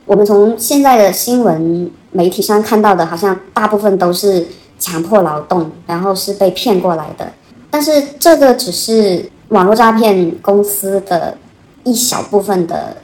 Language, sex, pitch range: Chinese, male, 175-220 Hz